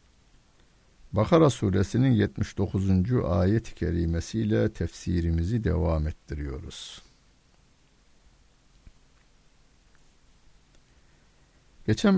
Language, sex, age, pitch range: Turkish, male, 60-79, 75-105 Hz